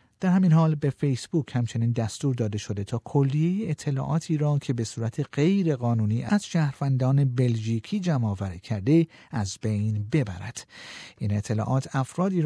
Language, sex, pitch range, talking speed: Persian, male, 110-150 Hz, 140 wpm